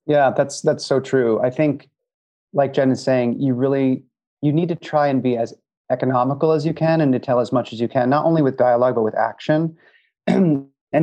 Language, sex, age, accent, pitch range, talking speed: English, male, 30-49, American, 120-150 Hz, 220 wpm